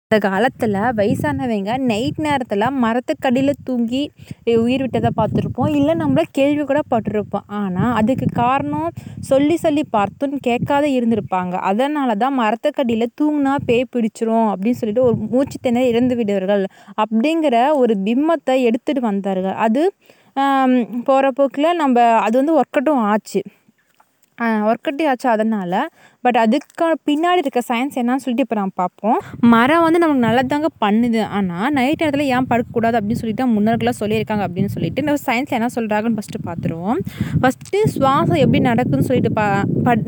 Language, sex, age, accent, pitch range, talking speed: Tamil, female, 20-39, native, 220-275 Hz, 130 wpm